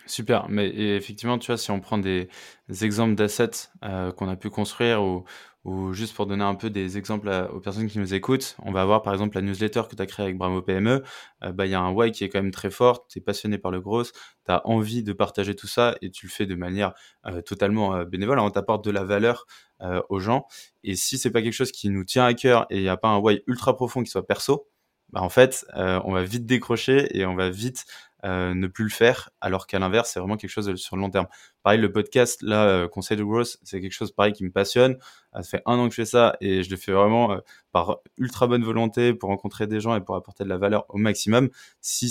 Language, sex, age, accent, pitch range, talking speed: French, male, 20-39, French, 95-115 Hz, 270 wpm